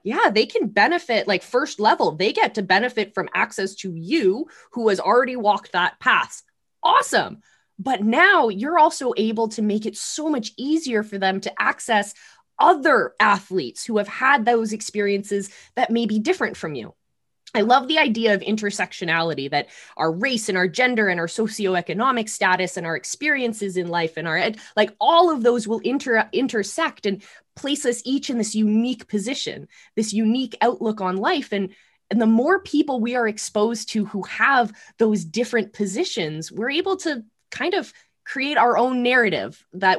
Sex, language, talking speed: female, English, 175 wpm